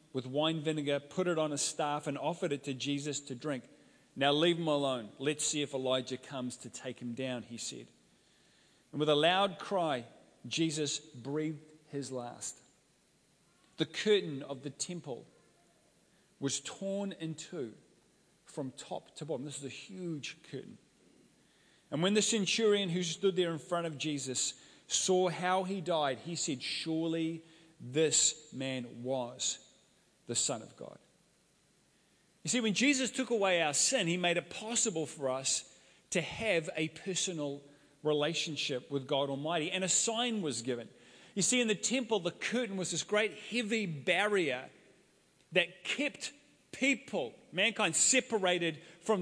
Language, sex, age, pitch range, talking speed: English, male, 40-59, 145-195 Hz, 155 wpm